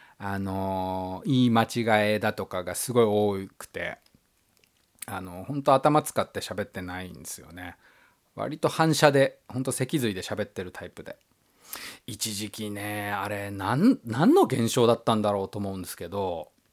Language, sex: Japanese, male